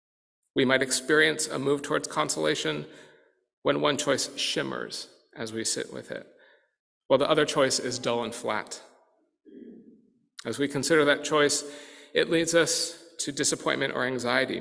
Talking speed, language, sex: 150 wpm, English, male